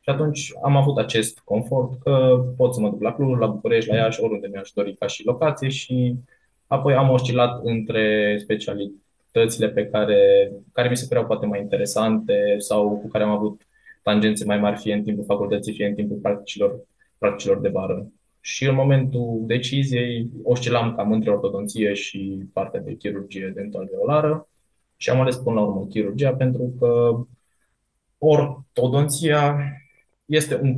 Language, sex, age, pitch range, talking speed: Romanian, male, 20-39, 105-135 Hz, 160 wpm